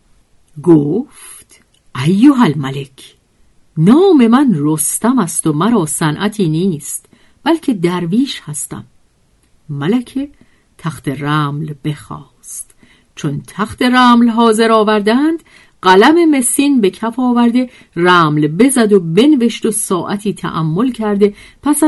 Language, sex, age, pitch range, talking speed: Persian, female, 50-69, 165-235 Hz, 100 wpm